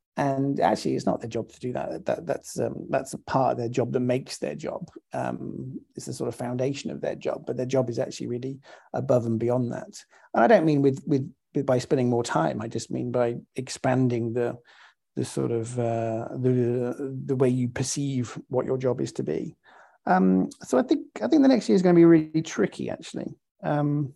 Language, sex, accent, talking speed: English, male, British, 225 wpm